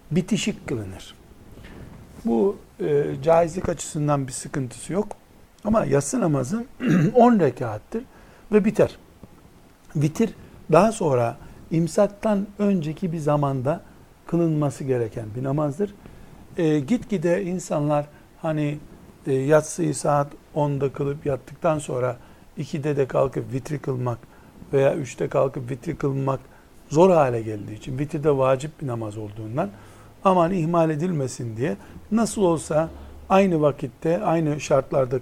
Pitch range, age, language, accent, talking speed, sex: 140-175 Hz, 60-79, Turkish, native, 115 wpm, male